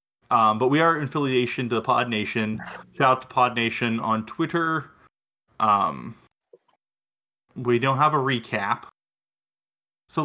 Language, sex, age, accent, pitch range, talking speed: English, male, 20-39, American, 115-145 Hz, 140 wpm